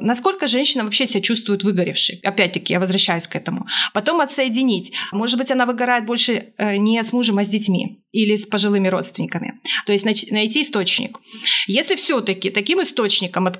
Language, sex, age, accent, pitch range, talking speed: Russian, female, 30-49, native, 195-240 Hz, 160 wpm